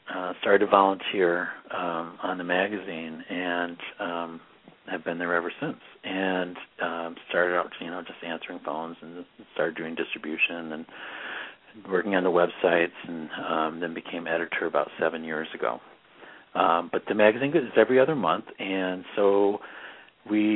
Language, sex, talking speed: English, male, 155 wpm